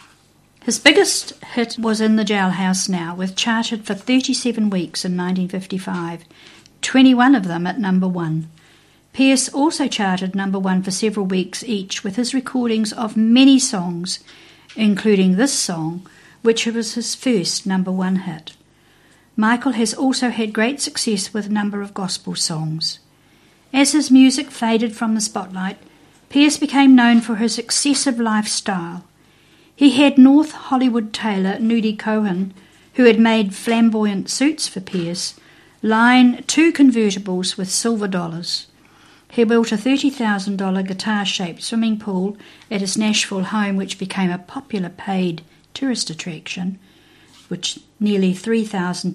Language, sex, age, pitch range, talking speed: English, female, 60-79, 185-235 Hz, 140 wpm